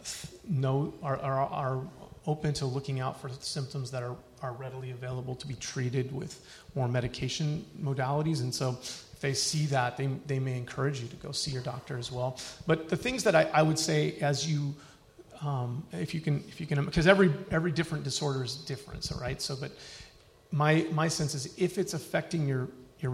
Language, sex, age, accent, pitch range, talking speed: English, male, 30-49, American, 130-150 Hz, 200 wpm